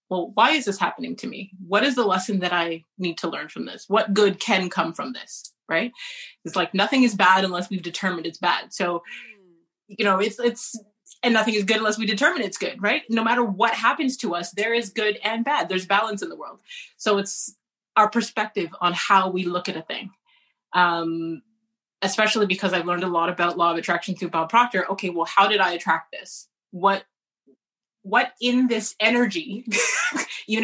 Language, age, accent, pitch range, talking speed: English, 20-39, American, 180-230 Hz, 205 wpm